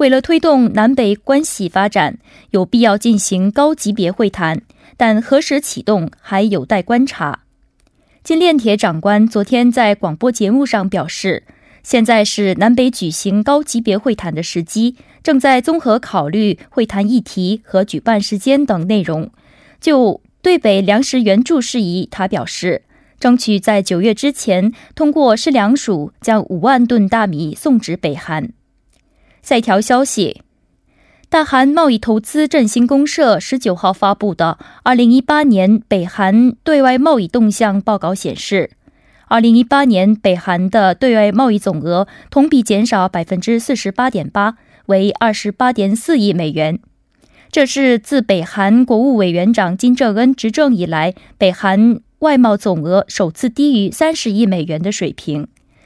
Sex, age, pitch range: female, 20-39, 195-255 Hz